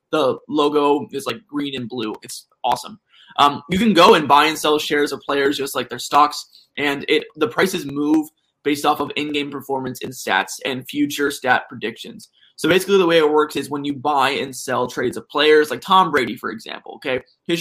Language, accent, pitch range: English, American, 145-180 Hz